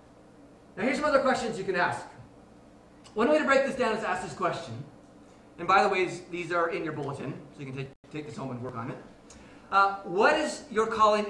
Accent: American